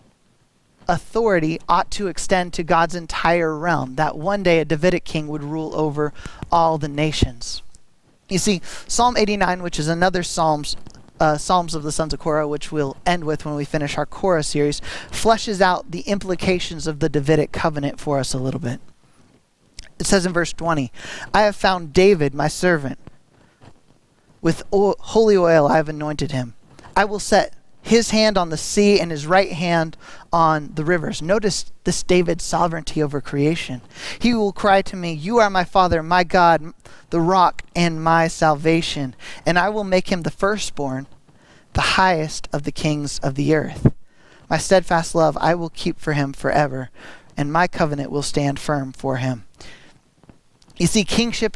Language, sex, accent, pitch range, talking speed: English, male, American, 150-180 Hz, 170 wpm